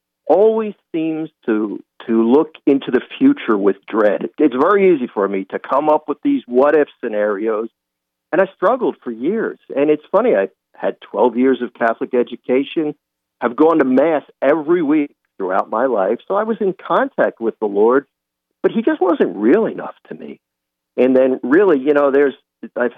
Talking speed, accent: 185 wpm, American